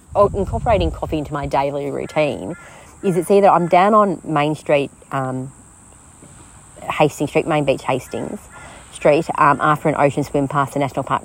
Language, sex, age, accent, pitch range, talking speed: English, female, 30-49, Australian, 140-180 Hz, 160 wpm